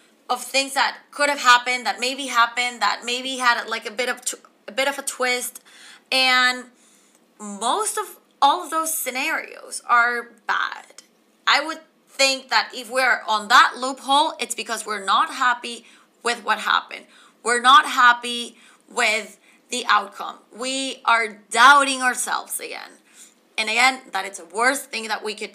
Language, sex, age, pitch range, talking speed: English, female, 20-39, 235-290 Hz, 160 wpm